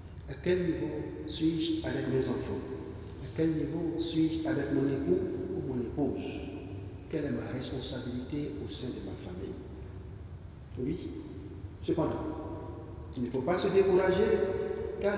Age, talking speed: 60-79, 140 wpm